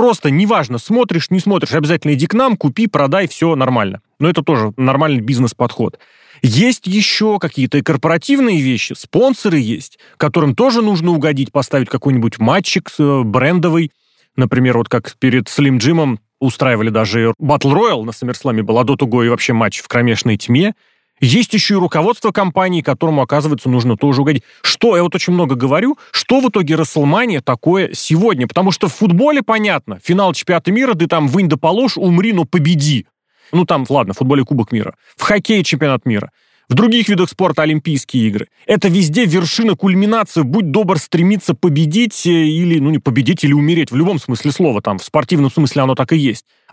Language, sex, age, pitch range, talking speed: Russian, male, 30-49, 130-190 Hz, 175 wpm